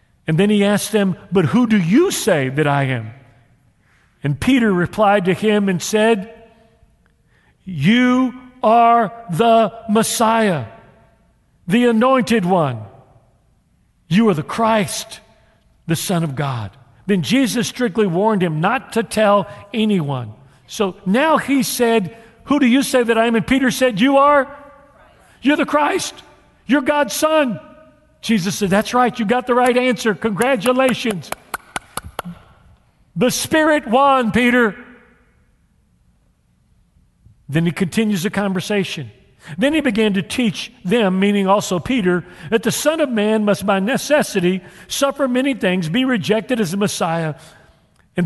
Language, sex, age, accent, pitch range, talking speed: English, male, 40-59, American, 185-250 Hz, 140 wpm